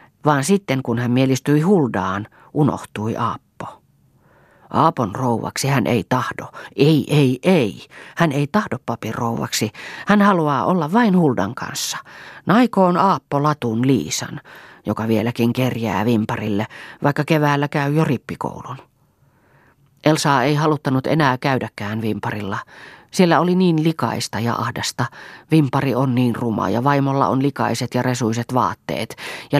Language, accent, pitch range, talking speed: Finnish, native, 120-150 Hz, 130 wpm